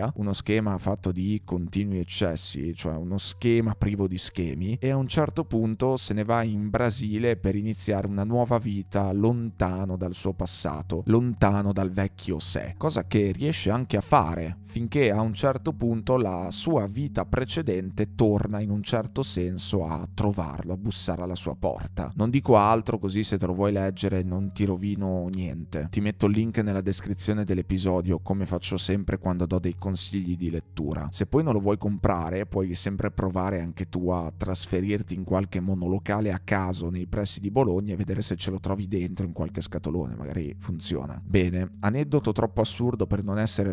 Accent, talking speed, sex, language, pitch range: native, 180 wpm, male, Italian, 90-110 Hz